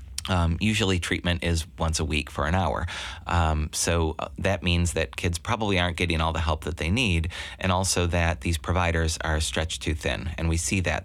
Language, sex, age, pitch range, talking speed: English, male, 30-49, 80-90 Hz, 205 wpm